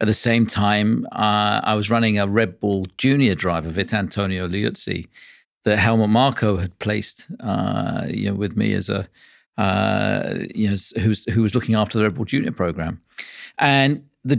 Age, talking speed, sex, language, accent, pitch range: 50-69, 175 wpm, male, English, British, 100-115 Hz